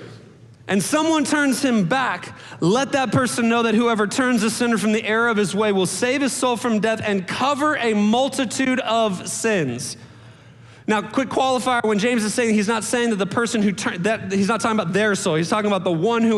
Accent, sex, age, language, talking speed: American, male, 30-49, English, 215 wpm